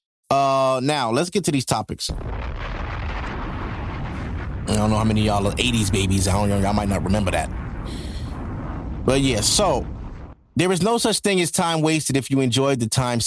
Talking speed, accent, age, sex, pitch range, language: 185 wpm, American, 30-49, male, 115-155 Hz, English